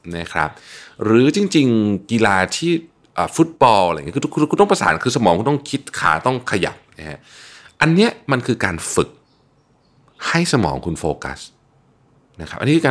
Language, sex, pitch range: Thai, male, 90-130 Hz